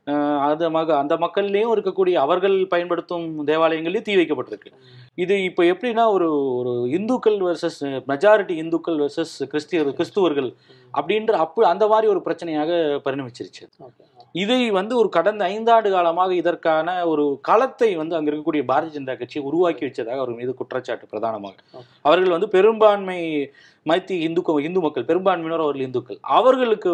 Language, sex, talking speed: Tamil, male, 125 wpm